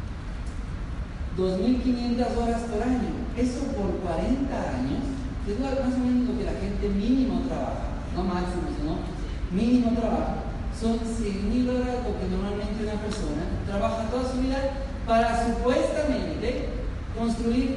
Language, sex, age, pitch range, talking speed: Spanish, male, 40-59, 210-245 Hz, 125 wpm